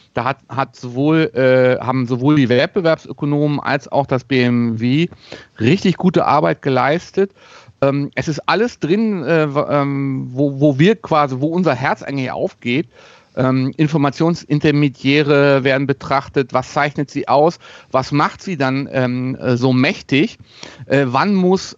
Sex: male